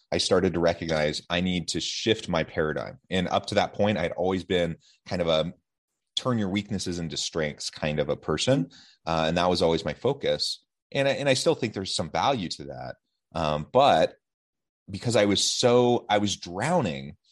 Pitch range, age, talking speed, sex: 80-105 Hz, 30-49, 195 wpm, male